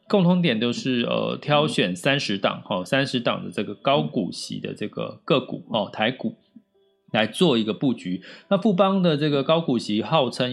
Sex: male